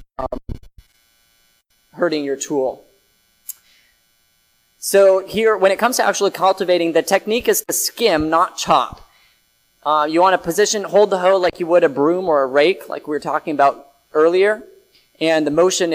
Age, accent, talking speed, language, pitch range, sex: 30-49, American, 165 wpm, English, 115-170 Hz, male